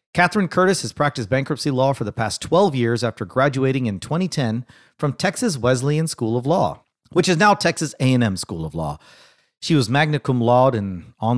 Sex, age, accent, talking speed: male, 40-59, American, 190 wpm